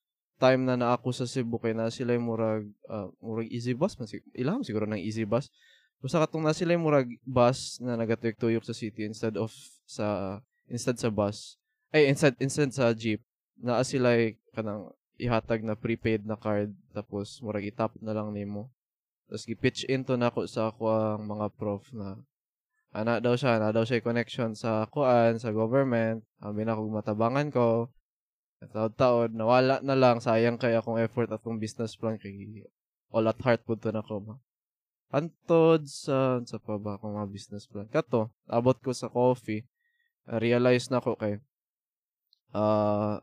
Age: 20-39